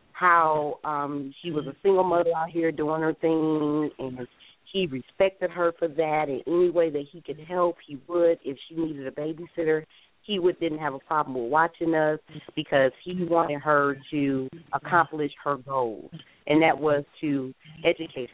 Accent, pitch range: American, 145-175 Hz